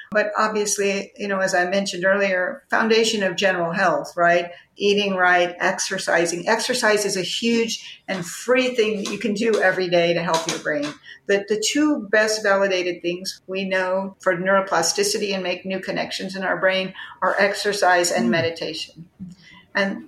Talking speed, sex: 160 wpm, female